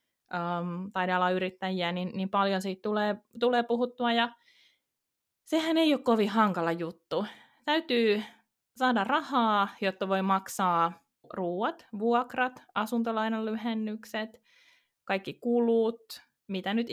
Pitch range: 185-235 Hz